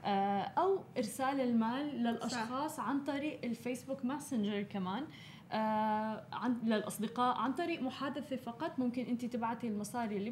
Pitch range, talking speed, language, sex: 210-255 Hz, 115 wpm, Arabic, female